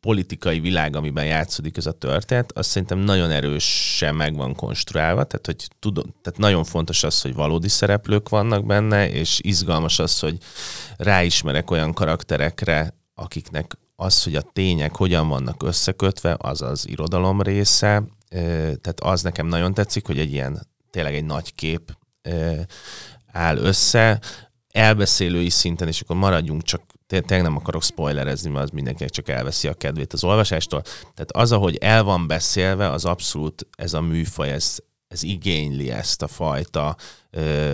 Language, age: Hungarian, 30-49